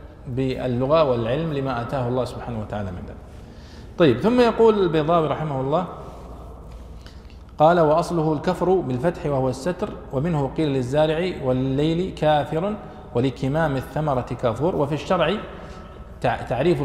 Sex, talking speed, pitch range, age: male, 115 wpm, 115-160 Hz, 50-69